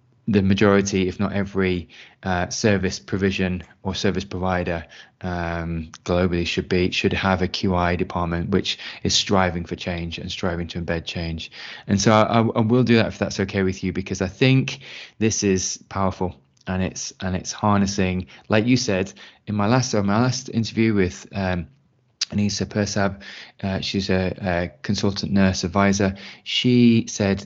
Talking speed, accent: 170 wpm, British